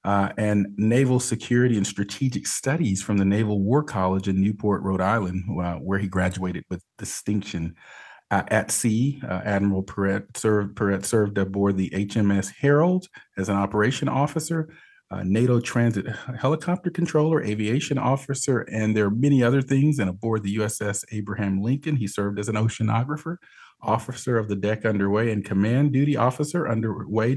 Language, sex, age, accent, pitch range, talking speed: English, male, 40-59, American, 100-125 Hz, 155 wpm